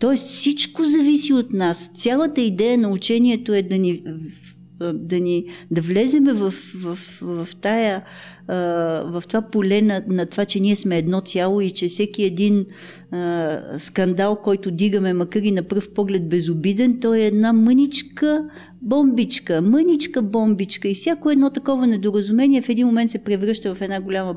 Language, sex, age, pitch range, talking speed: Bulgarian, female, 40-59, 175-220 Hz, 160 wpm